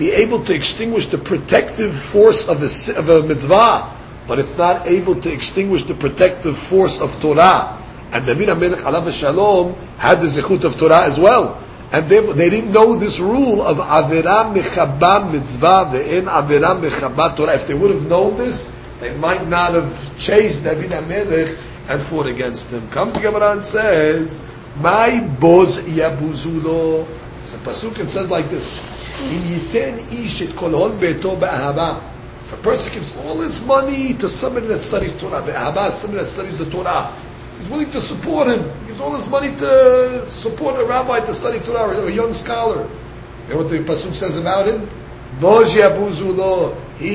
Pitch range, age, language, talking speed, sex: 155-210 Hz, 50-69, English, 160 wpm, male